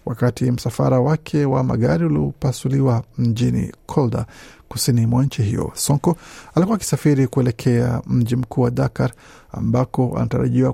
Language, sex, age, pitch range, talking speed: Swahili, male, 50-69, 120-140 Hz, 130 wpm